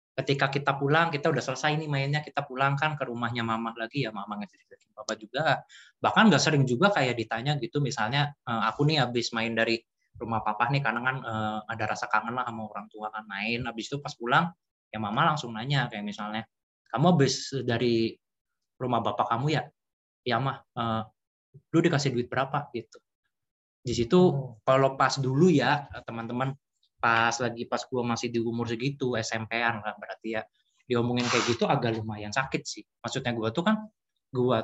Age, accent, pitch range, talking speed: 20-39, native, 110-145 Hz, 180 wpm